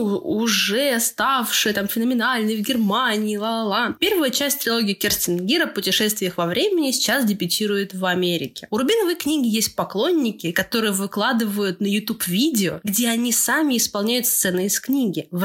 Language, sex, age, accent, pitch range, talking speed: Russian, female, 20-39, native, 195-260 Hz, 145 wpm